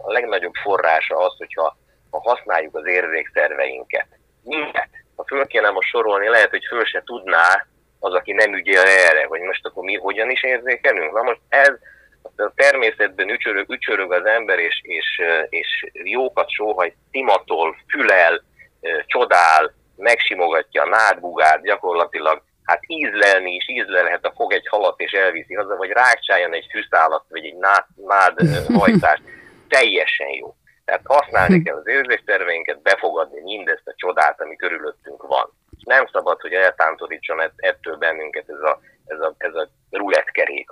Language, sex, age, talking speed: Hungarian, male, 30-49, 150 wpm